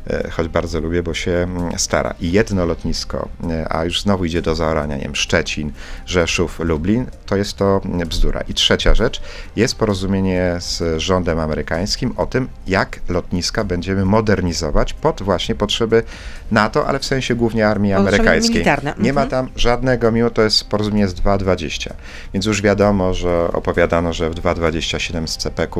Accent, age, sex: native, 40-59, male